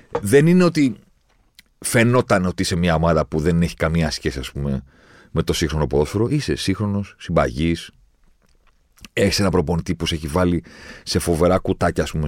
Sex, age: male, 40-59